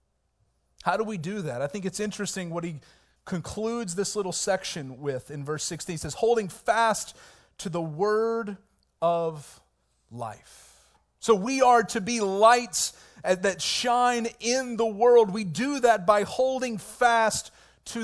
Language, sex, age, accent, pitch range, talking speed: English, male, 40-59, American, 185-235 Hz, 155 wpm